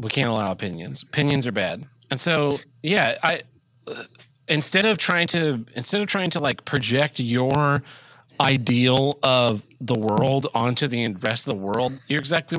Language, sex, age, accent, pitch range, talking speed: English, male, 30-49, American, 115-145 Hz, 160 wpm